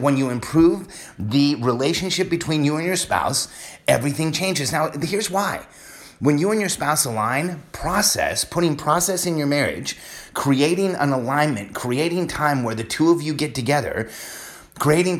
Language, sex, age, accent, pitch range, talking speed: English, male, 30-49, American, 120-160 Hz, 160 wpm